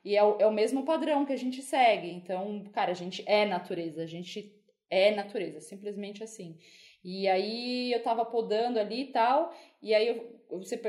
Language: Portuguese